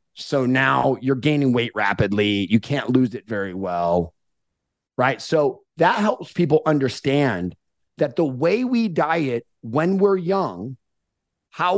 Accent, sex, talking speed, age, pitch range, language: American, male, 140 wpm, 30-49, 125-160 Hz, English